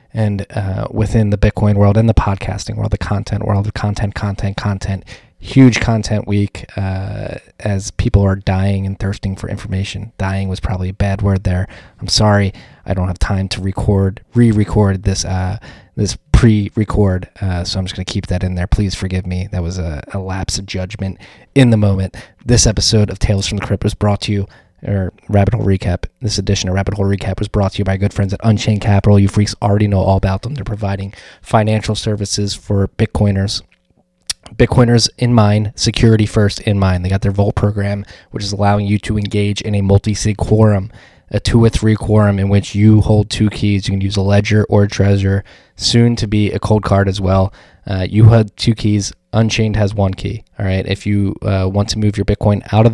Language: English